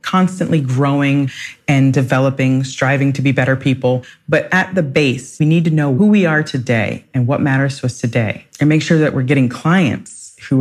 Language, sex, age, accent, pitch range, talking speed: English, female, 30-49, American, 130-165 Hz, 200 wpm